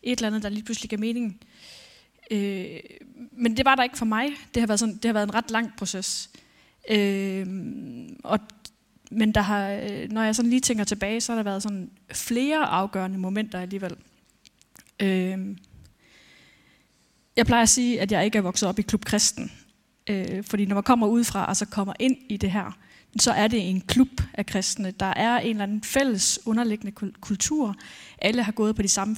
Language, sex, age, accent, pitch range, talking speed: Danish, female, 20-39, native, 200-230 Hz, 195 wpm